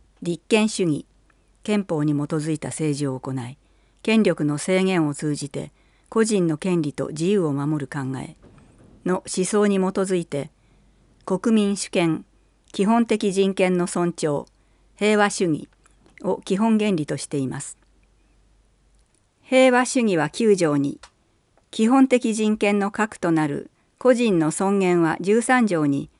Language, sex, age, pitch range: Japanese, female, 50-69, 150-215 Hz